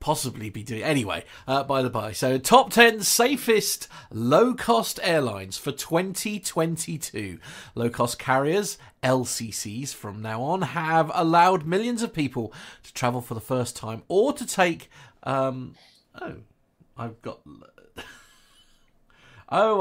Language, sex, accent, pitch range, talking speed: English, male, British, 120-170 Hz, 125 wpm